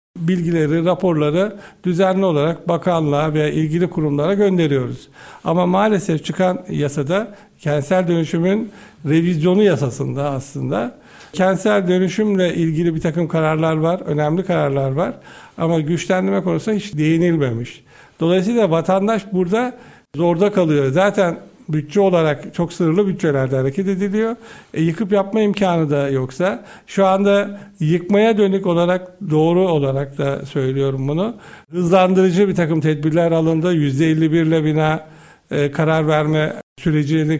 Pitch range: 155-195 Hz